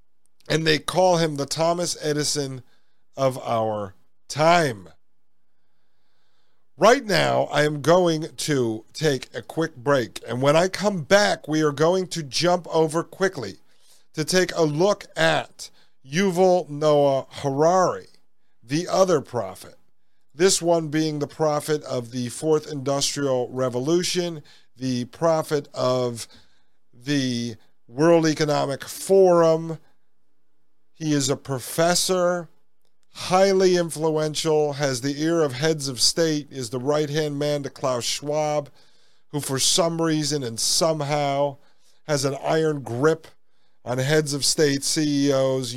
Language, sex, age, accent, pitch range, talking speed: English, male, 50-69, American, 125-160 Hz, 125 wpm